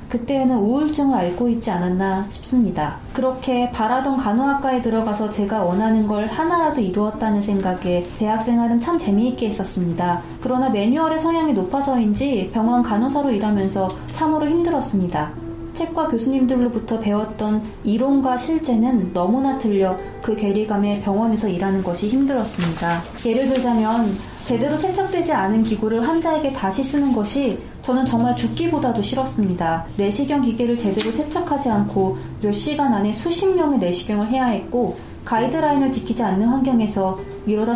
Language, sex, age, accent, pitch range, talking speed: English, female, 20-39, Korean, 205-265 Hz, 120 wpm